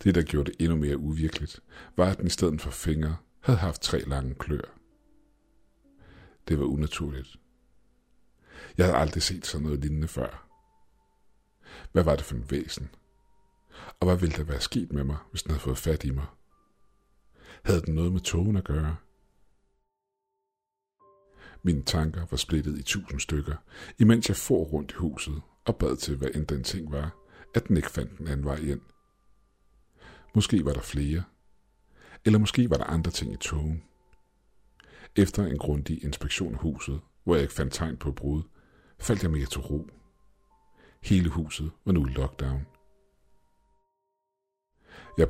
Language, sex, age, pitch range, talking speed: Danish, male, 60-79, 70-90 Hz, 165 wpm